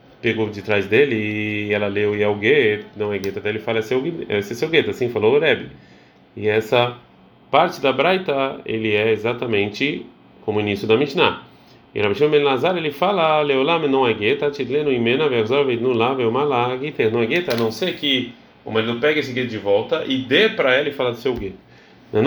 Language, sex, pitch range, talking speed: Portuguese, male, 105-140 Hz, 170 wpm